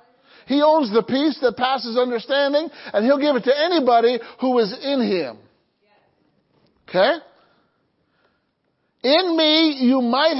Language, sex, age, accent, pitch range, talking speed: English, male, 50-69, American, 225-280 Hz, 125 wpm